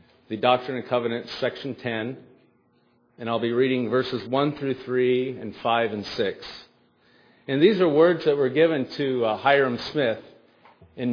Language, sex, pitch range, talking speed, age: English, male, 105-130 Hz, 155 wpm, 40-59